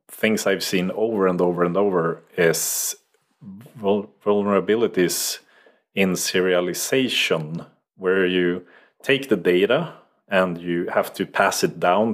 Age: 30-49